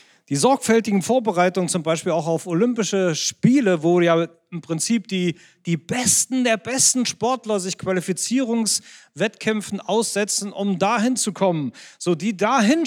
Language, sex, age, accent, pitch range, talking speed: German, male, 40-59, German, 160-225 Hz, 135 wpm